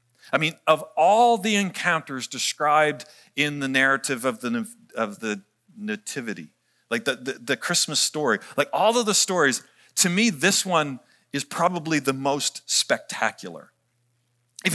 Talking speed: 145 wpm